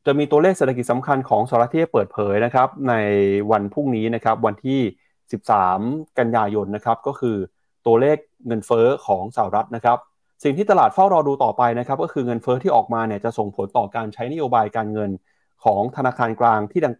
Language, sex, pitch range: Thai, male, 110-140 Hz